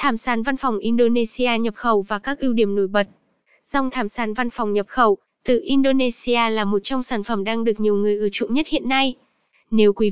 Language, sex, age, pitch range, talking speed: Vietnamese, female, 10-29, 215-265 Hz, 225 wpm